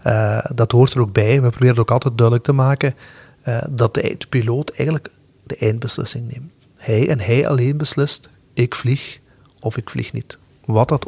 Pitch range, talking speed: 115-135 Hz, 195 wpm